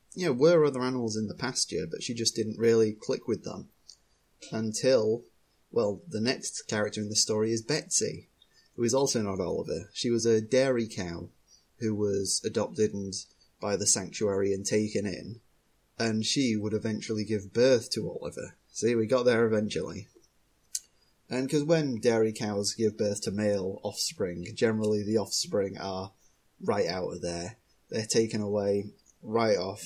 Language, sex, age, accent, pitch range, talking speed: English, male, 20-39, British, 105-120 Hz, 165 wpm